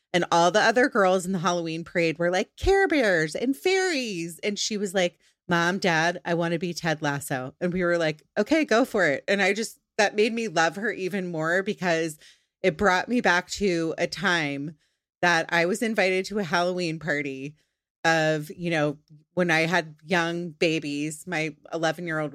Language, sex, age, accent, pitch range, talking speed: English, female, 30-49, American, 160-200 Hz, 195 wpm